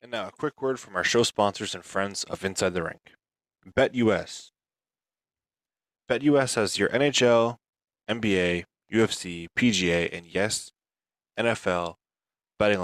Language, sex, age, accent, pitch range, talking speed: English, male, 20-39, American, 95-120 Hz, 125 wpm